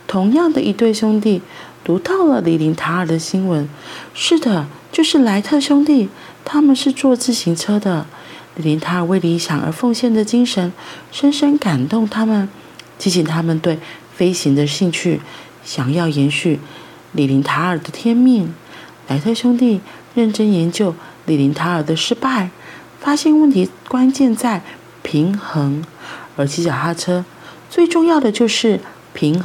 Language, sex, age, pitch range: Chinese, female, 40-59, 160-235 Hz